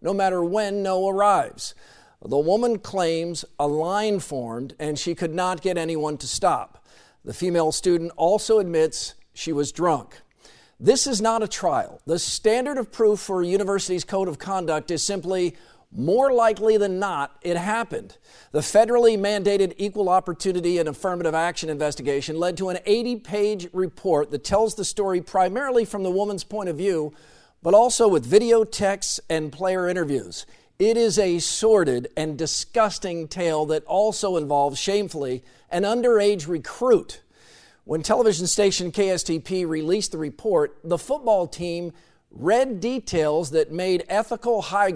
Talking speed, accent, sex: 150 wpm, American, male